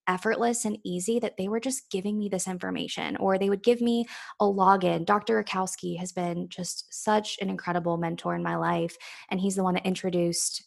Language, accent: English, American